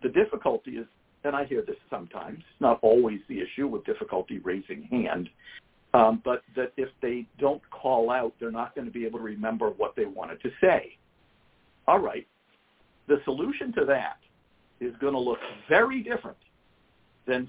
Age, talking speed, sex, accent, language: 60-79, 175 wpm, male, American, English